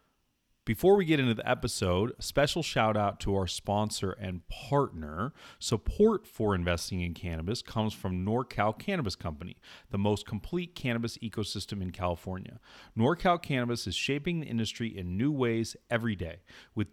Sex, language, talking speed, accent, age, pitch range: male, English, 155 wpm, American, 40-59, 100-130 Hz